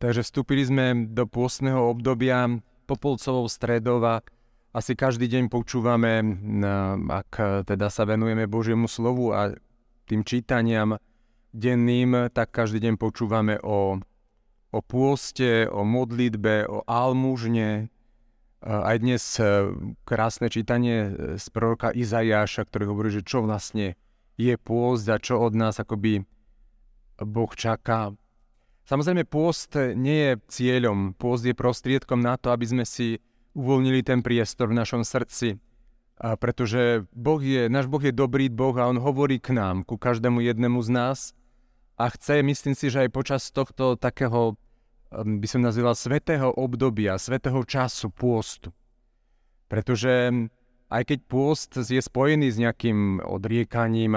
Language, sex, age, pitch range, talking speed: Slovak, male, 40-59, 110-125 Hz, 135 wpm